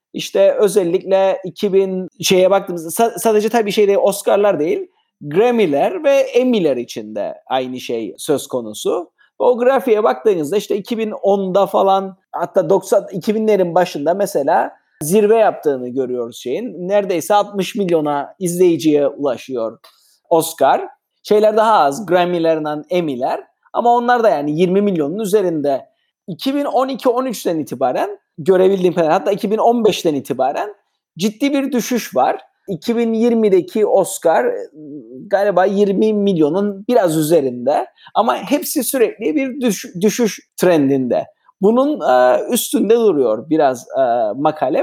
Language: Turkish